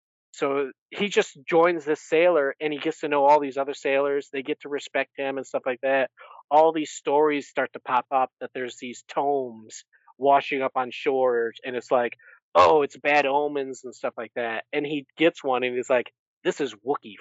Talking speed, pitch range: 210 wpm, 125-155 Hz